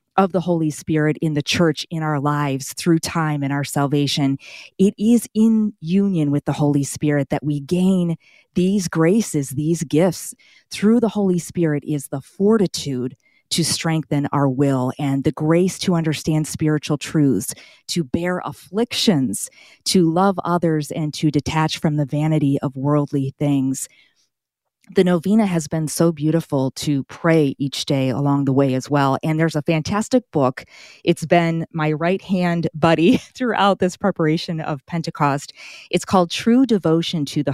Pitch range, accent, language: 145-175 Hz, American, English